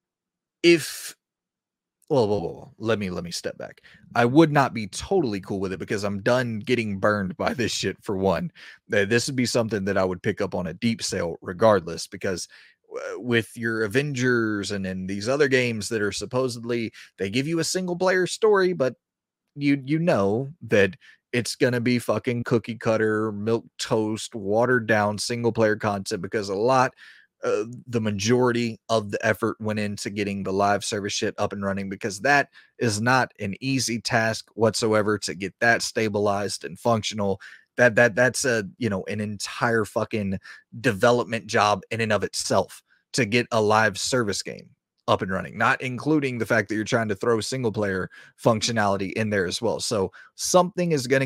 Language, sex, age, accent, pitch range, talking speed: English, male, 30-49, American, 105-130 Hz, 185 wpm